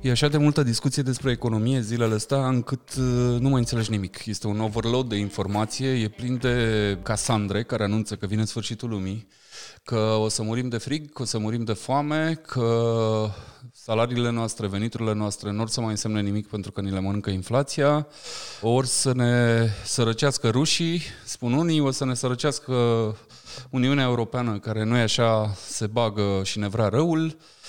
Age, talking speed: 20-39, 175 wpm